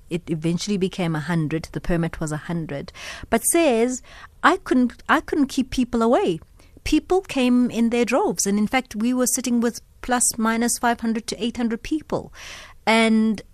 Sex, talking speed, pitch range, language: female, 175 wpm, 175-230 Hz, English